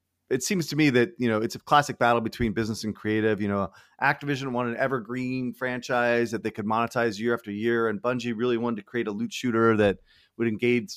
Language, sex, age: English, male, 30-49